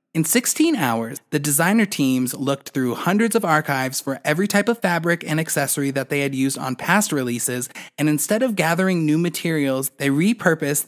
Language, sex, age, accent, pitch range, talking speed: English, male, 20-39, American, 135-175 Hz, 180 wpm